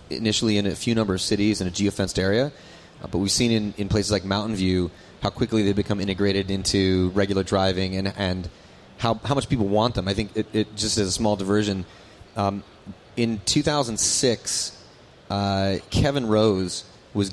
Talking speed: 185 wpm